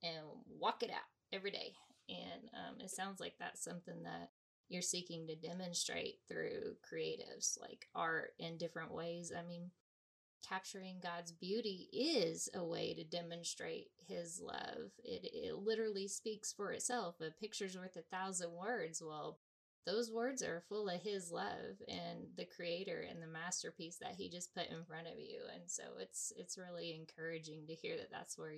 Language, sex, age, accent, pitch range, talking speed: English, female, 20-39, American, 170-235 Hz, 170 wpm